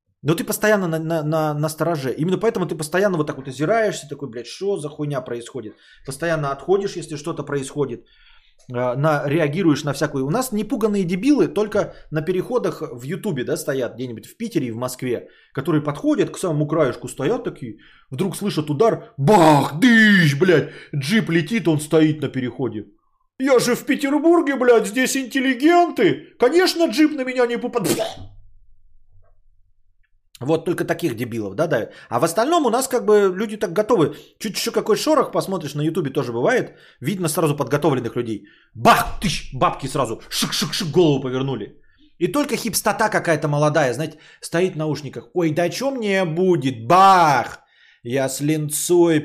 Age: 20-39